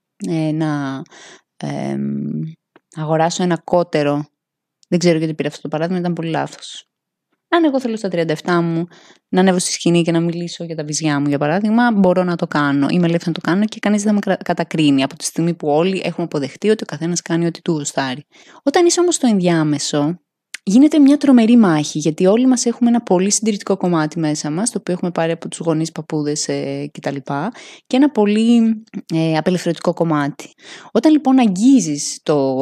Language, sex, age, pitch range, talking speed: Greek, female, 20-39, 155-195 Hz, 190 wpm